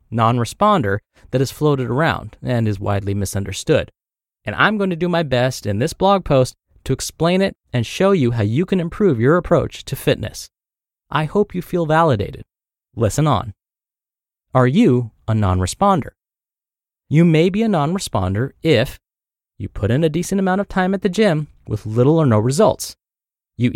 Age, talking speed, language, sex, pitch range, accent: 30-49, 170 wpm, English, male, 110-175 Hz, American